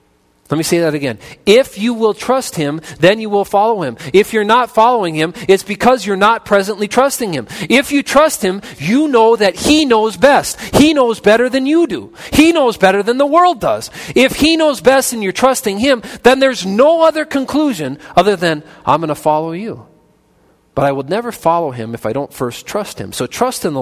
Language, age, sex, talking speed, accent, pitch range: English, 40-59, male, 215 wpm, American, 135-215 Hz